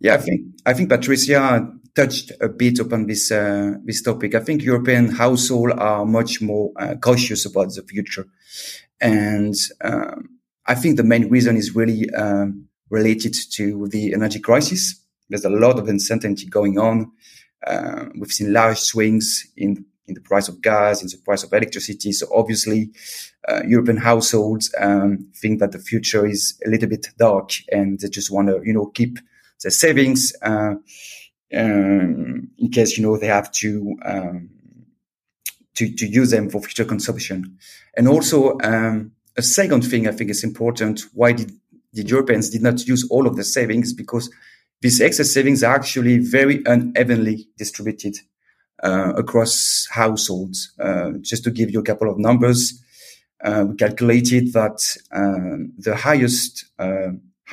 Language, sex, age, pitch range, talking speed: English, male, 30-49, 105-120 Hz, 165 wpm